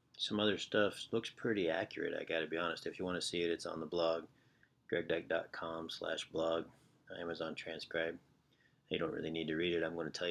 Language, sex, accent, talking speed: English, male, American, 215 wpm